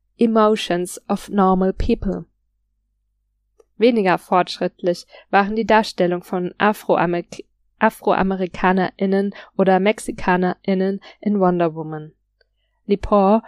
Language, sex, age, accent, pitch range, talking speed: German, female, 20-39, German, 180-215 Hz, 75 wpm